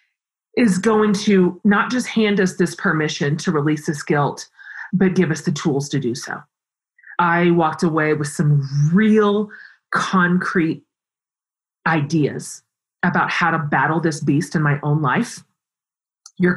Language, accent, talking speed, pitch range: English, American, 145 wpm, 160-205 Hz